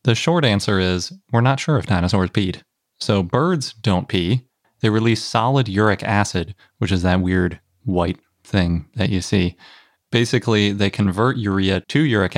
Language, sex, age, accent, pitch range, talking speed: English, male, 30-49, American, 95-120 Hz, 165 wpm